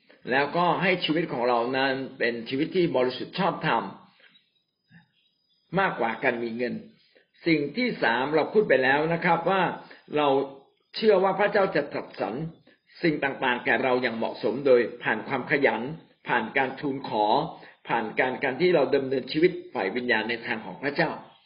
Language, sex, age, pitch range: Thai, male, 60-79, 135-195 Hz